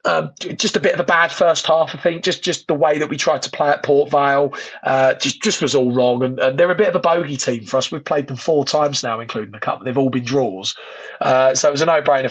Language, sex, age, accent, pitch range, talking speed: English, male, 30-49, British, 130-150 Hz, 290 wpm